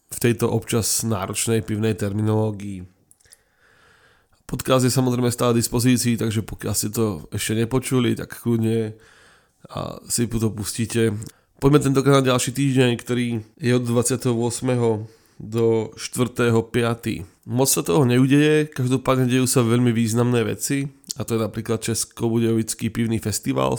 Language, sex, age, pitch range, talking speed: Czech, male, 20-39, 110-120 Hz, 125 wpm